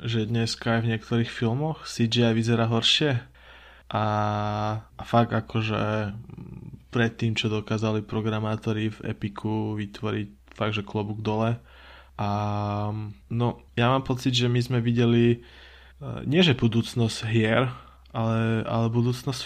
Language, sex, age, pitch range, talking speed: Slovak, male, 20-39, 110-120 Hz, 125 wpm